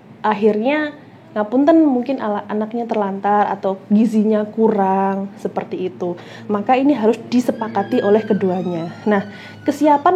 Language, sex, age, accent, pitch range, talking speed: Indonesian, female, 20-39, native, 210-270 Hz, 110 wpm